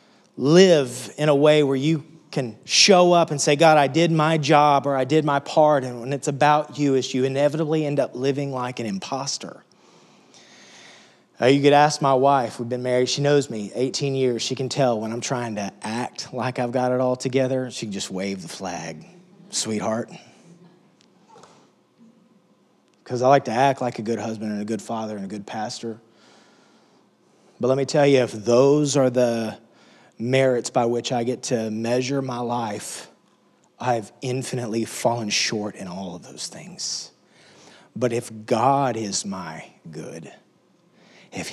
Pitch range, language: 120-145 Hz, English